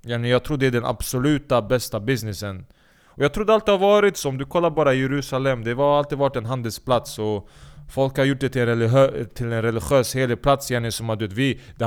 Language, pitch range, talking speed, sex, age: Swedish, 120-145 Hz, 210 wpm, male, 20-39